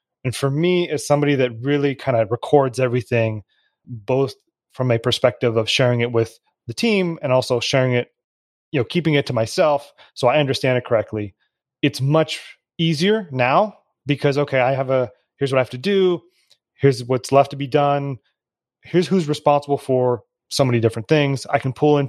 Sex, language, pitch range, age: male, English, 120-145 Hz, 30-49